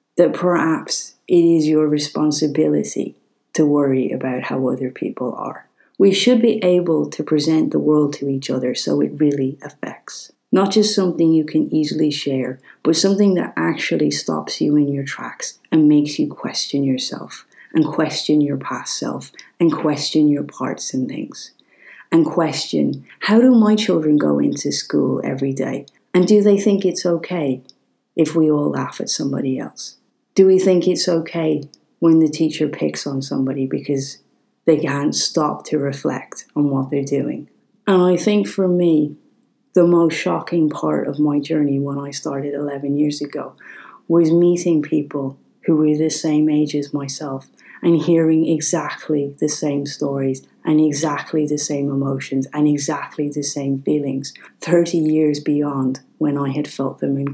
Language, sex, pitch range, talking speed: English, female, 140-170 Hz, 165 wpm